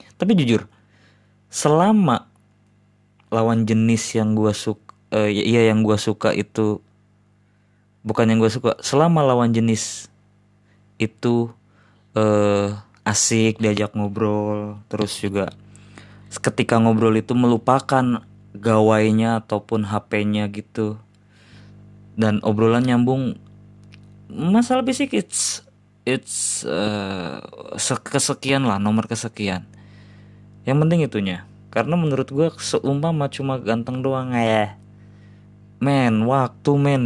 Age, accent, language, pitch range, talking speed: 20-39, native, Indonesian, 105-120 Hz, 100 wpm